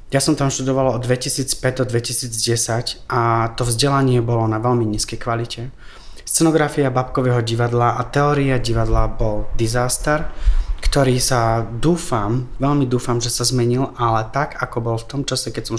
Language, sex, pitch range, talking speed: Slovak, male, 120-135 Hz, 150 wpm